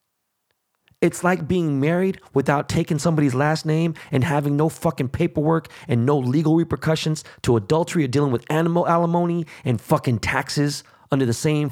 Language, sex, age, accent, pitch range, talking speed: English, male, 20-39, American, 110-150 Hz, 160 wpm